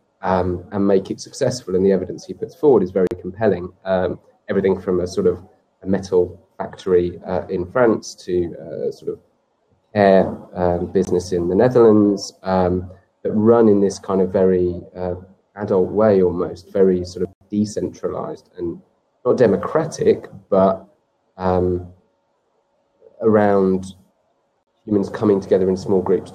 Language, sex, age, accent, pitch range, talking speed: English, male, 30-49, British, 90-105 Hz, 145 wpm